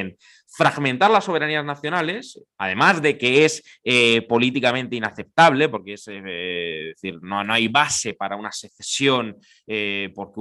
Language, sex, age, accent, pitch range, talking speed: Spanish, male, 20-39, Spanish, 105-150 Hz, 145 wpm